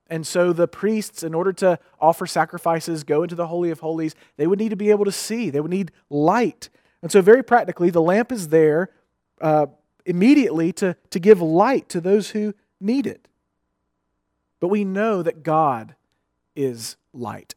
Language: English